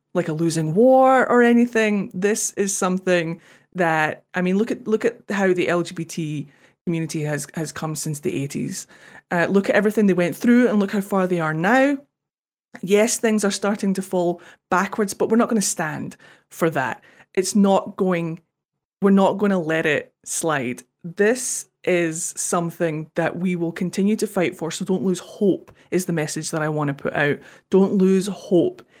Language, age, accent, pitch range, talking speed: English, 20-39, British, 160-195 Hz, 190 wpm